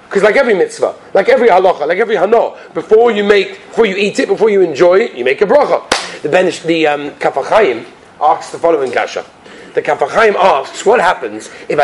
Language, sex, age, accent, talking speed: English, male, 30-49, British, 200 wpm